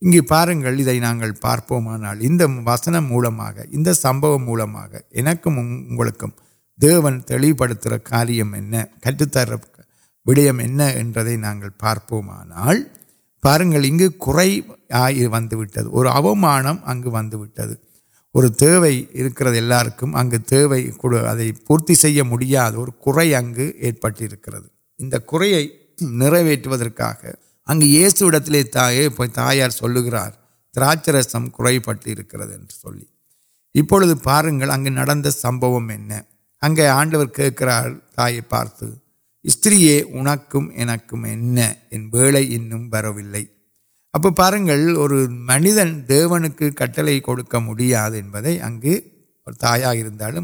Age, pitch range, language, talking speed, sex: 50-69, 115-150 Hz, Urdu, 50 wpm, male